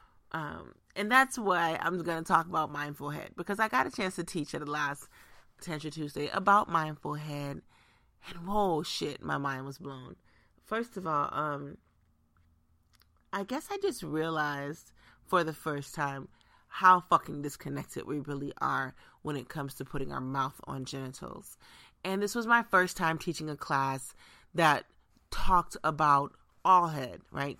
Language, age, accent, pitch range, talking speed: English, 30-49, American, 140-175 Hz, 165 wpm